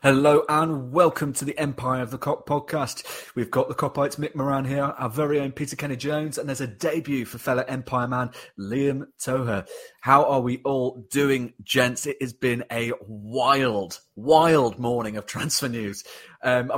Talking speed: 180 wpm